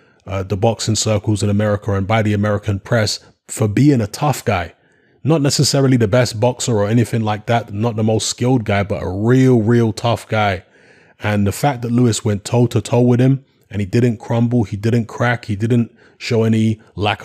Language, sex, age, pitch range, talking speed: English, male, 20-39, 105-120 Hz, 205 wpm